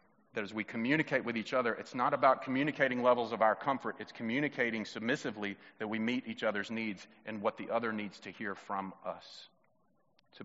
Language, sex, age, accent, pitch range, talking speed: English, male, 40-59, American, 125-155 Hz, 195 wpm